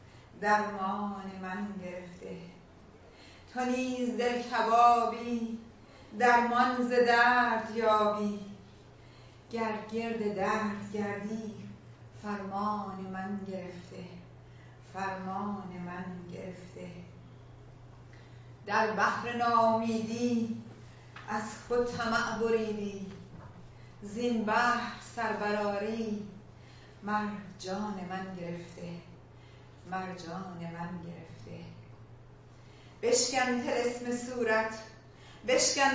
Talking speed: 65 wpm